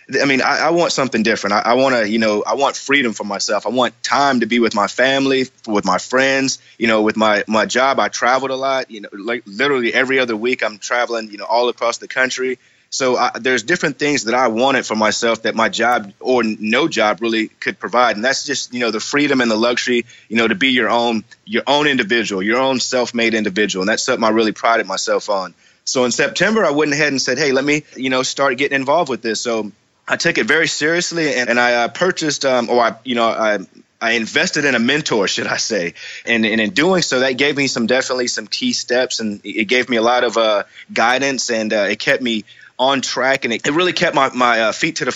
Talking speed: 250 wpm